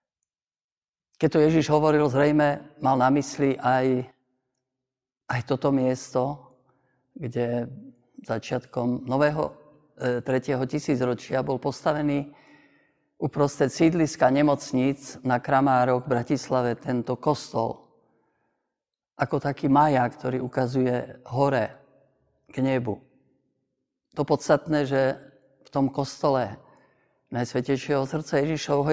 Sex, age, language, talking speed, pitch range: male, 50-69, Slovak, 95 wpm, 125-145 Hz